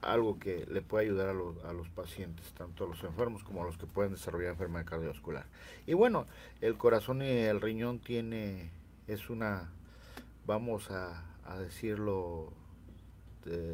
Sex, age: male, 50-69